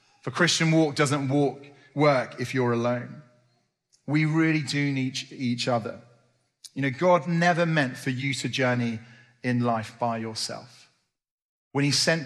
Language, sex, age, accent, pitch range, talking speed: English, male, 30-49, British, 125-155 Hz, 150 wpm